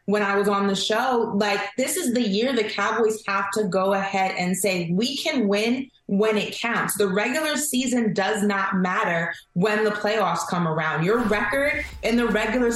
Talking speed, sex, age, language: 195 wpm, female, 20-39, English